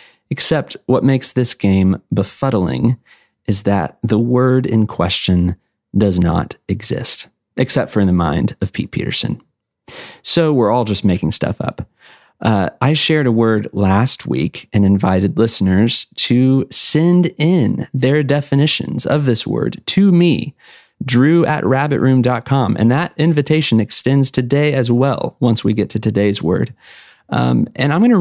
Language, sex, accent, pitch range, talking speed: English, male, American, 100-135 Hz, 150 wpm